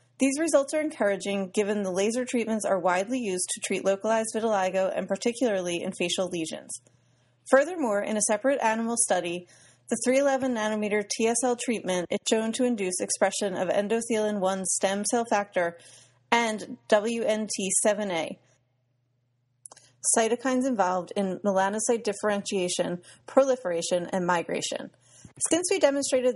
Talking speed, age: 125 wpm, 30-49